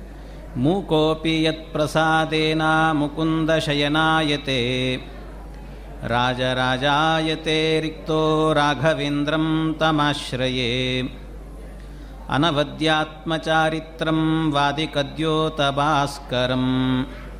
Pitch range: 140-160 Hz